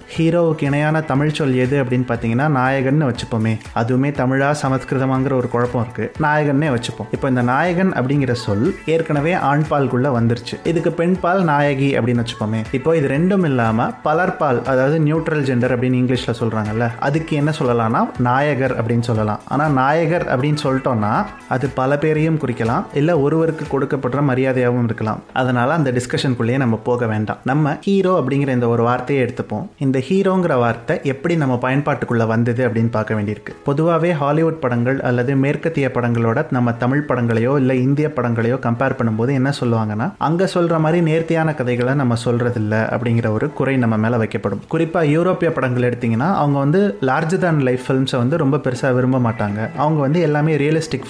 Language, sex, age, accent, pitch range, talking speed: Tamil, male, 30-49, native, 120-150 Hz, 90 wpm